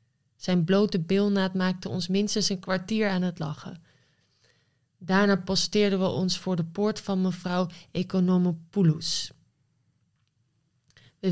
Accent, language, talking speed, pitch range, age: Dutch, Dutch, 115 wpm, 160-195 Hz, 20-39